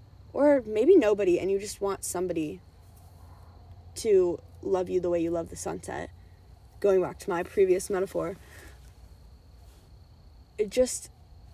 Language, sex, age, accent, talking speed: English, female, 10-29, American, 125 wpm